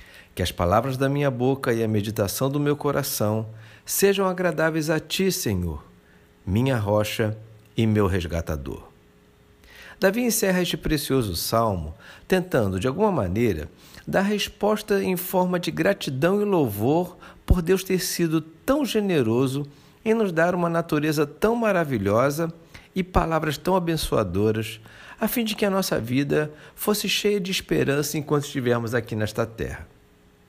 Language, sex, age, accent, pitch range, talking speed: Portuguese, male, 50-69, Brazilian, 110-175 Hz, 140 wpm